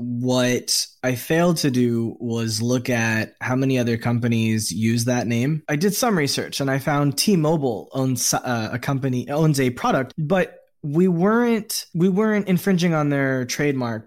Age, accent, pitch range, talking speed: 20-39, American, 110-150 Hz, 160 wpm